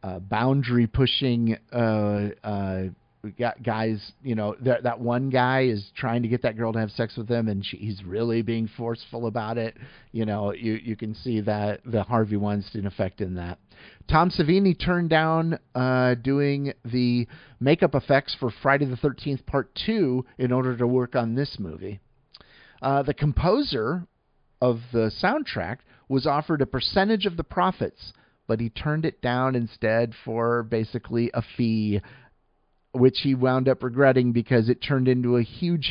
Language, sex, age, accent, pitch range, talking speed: English, male, 50-69, American, 105-135 Hz, 160 wpm